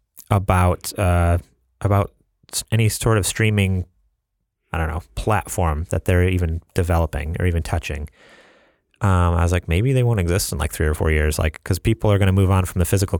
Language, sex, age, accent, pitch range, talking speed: English, male, 30-49, American, 90-105 Hz, 195 wpm